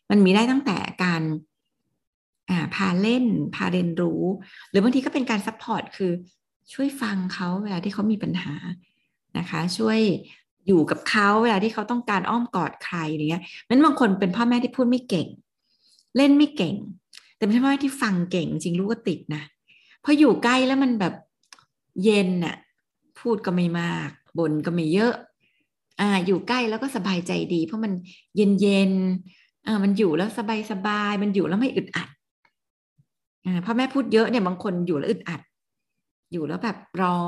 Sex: female